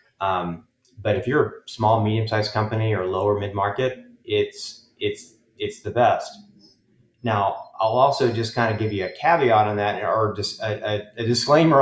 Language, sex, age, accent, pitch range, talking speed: English, male, 30-49, American, 105-120 Hz, 175 wpm